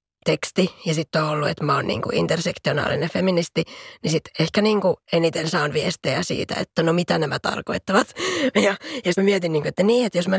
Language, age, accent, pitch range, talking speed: Finnish, 20-39, native, 165-210 Hz, 195 wpm